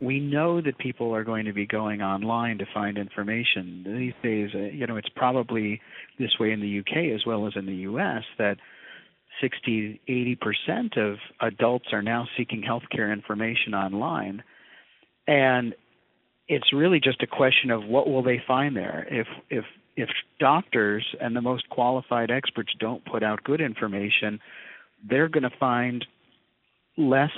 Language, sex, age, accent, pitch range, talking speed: English, male, 50-69, American, 105-130 Hz, 160 wpm